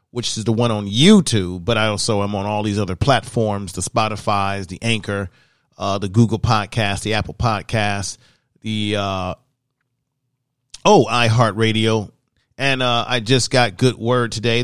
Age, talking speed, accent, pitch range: 40-59, 155 wpm, American, 110-125 Hz